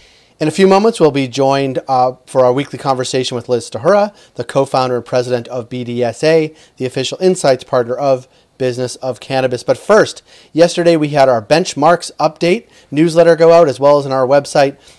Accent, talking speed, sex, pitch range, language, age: American, 185 wpm, male, 125-150 Hz, English, 30-49